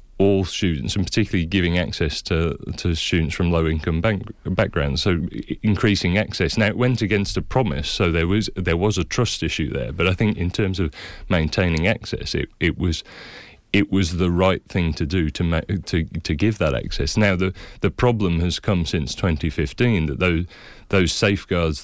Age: 30-49